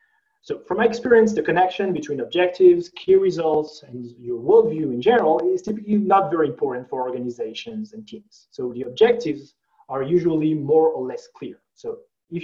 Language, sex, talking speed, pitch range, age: English, male, 170 wpm, 140-205 Hz, 30-49